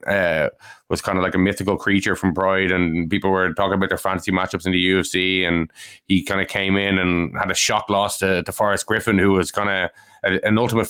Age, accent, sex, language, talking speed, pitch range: 20-39, Irish, male, English, 230 wpm, 90-100 Hz